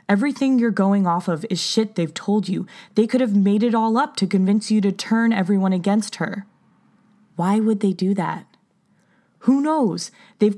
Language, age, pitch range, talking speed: English, 20-39, 175-215 Hz, 185 wpm